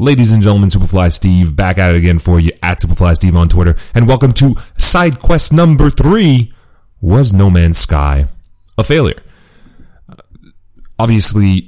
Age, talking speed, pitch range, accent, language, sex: 30-49, 155 wpm, 85-105 Hz, American, English, male